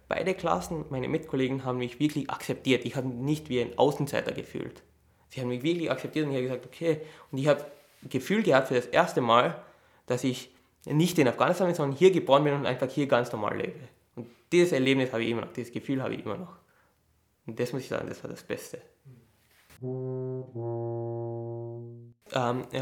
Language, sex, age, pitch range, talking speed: English, male, 20-39, 125-150 Hz, 190 wpm